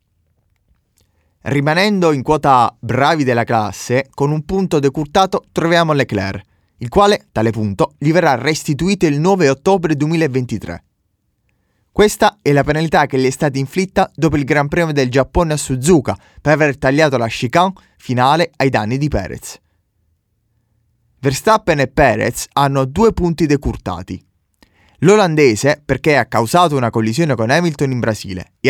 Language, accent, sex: Italian, native, male